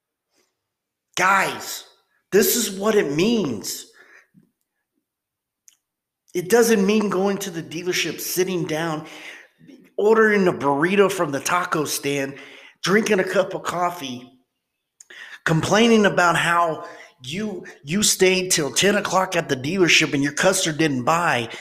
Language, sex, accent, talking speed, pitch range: English, male, American, 120 wpm, 150-205 Hz